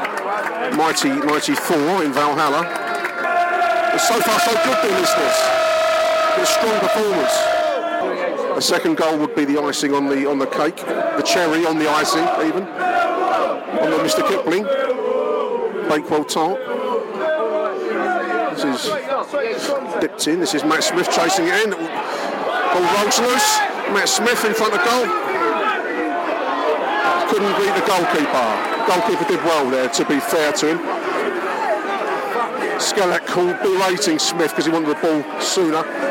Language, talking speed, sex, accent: English, 135 wpm, male, British